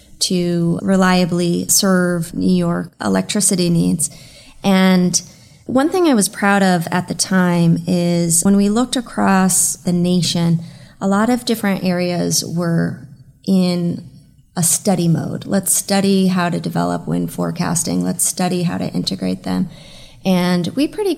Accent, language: American, English